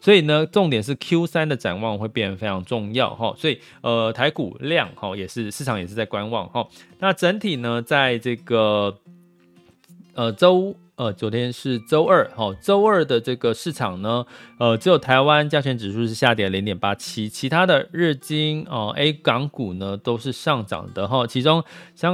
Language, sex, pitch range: Chinese, male, 110-150 Hz